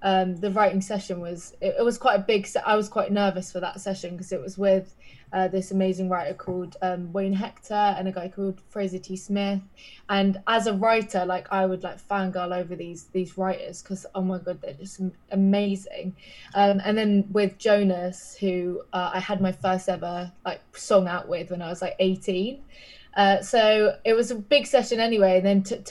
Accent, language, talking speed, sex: British, English, 210 wpm, female